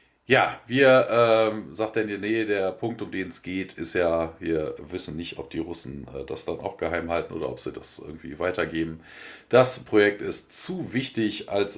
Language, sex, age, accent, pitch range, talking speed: German, male, 40-59, German, 100-130 Hz, 205 wpm